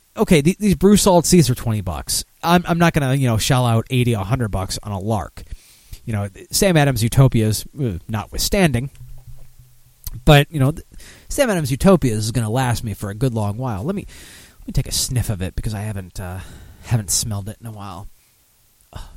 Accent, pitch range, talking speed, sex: American, 105-150 Hz, 205 wpm, male